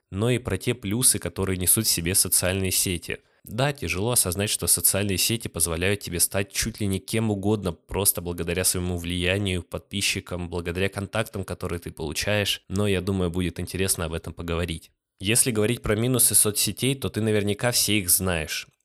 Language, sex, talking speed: Russian, male, 170 wpm